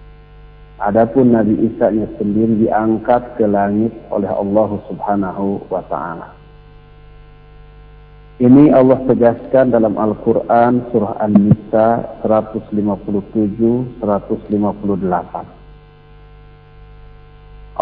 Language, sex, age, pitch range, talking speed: Indonesian, male, 50-69, 110-140 Hz, 70 wpm